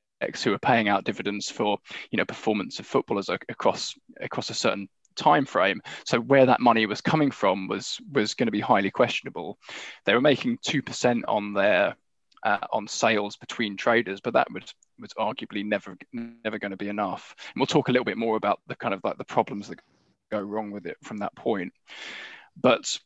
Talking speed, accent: 200 wpm, British